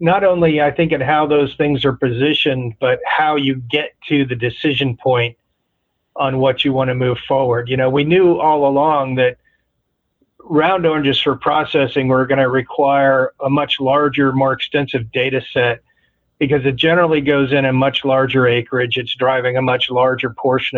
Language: English